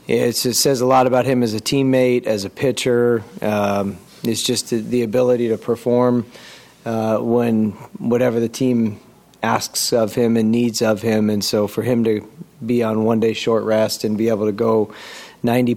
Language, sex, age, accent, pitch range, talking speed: English, male, 30-49, American, 105-120 Hz, 185 wpm